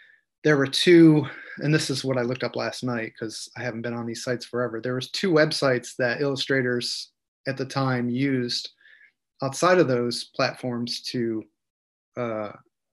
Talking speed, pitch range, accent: 165 wpm, 125-145 Hz, American